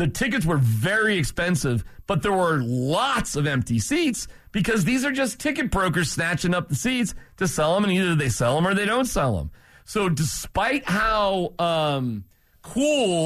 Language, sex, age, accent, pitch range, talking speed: English, male, 40-59, American, 120-195 Hz, 180 wpm